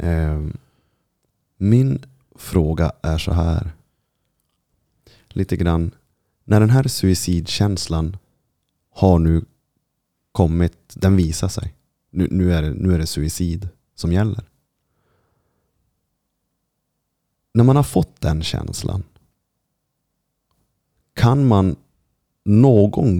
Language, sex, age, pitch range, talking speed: Swedish, male, 30-49, 85-110 Hz, 85 wpm